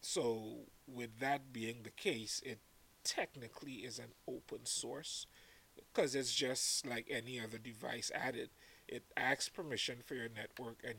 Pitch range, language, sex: 110-125 Hz, English, male